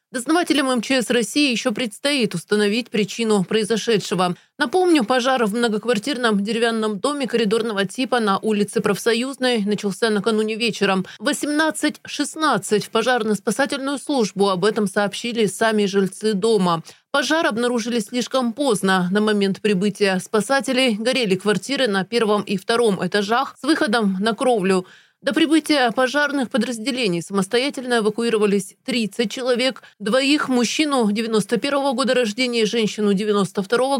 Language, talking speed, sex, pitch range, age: Russian, 120 wpm, female, 210-260 Hz, 30-49